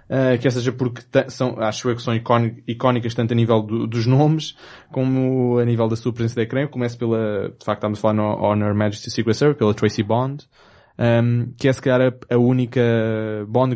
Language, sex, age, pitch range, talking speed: Portuguese, male, 20-39, 110-125 Hz, 210 wpm